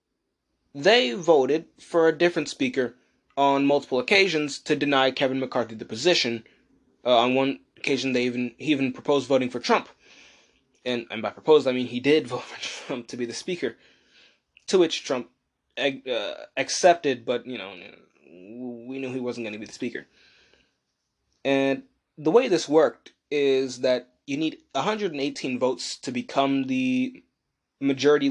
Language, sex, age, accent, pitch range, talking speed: English, male, 20-39, American, 130-175 Hz, 155 wpm